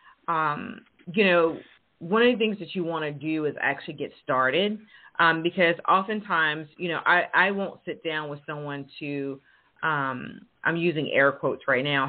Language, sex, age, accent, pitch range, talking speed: English, female, 30-49, American, 145-175 Hz, 180 wpm